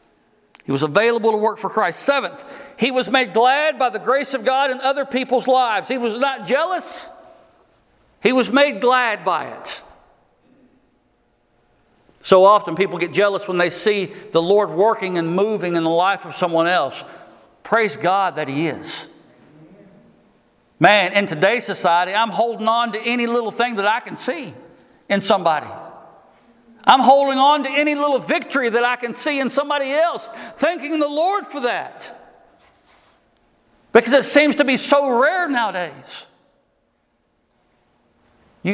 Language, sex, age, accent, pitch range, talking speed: English, male, 50-69, American, 205-280 Hz, 155 wpm